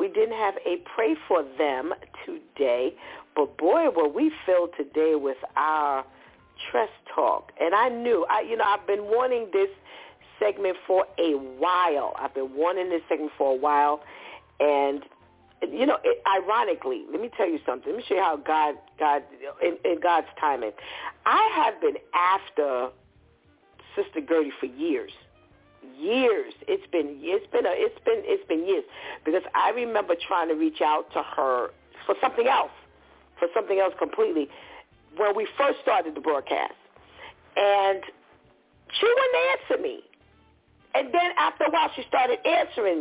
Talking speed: 155 wpm